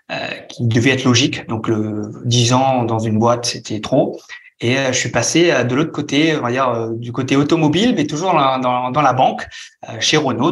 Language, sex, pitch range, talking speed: French, male, 120-150 Hz, 230 wpm